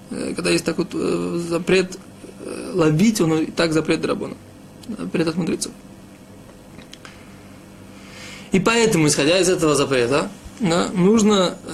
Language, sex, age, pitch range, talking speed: Russian, male, 20-39, 155-195 Hz, 100 wpm